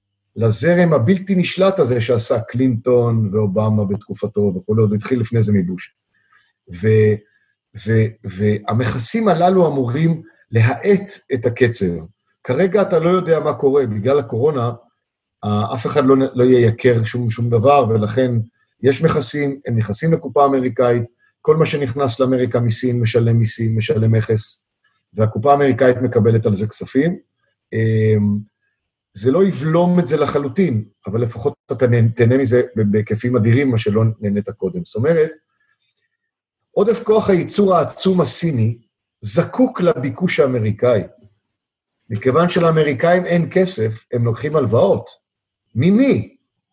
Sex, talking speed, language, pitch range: male, 120 wpm, Hebrew, 110-145 Hz